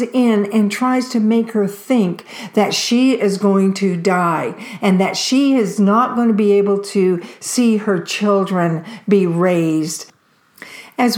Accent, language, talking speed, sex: American, English, 155 wpm, female